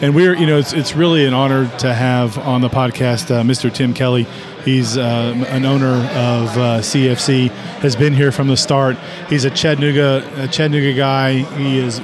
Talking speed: 195 wpm